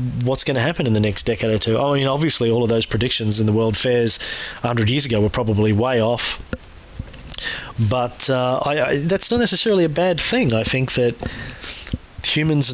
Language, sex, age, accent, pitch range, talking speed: English, male, 30-49, Australian, 110-135 Hz, 220 wpm